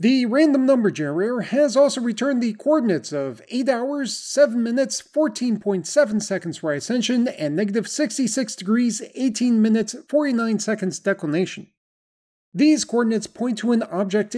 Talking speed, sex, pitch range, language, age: 140 wpm, male, 195-250 Hz, English, 40-59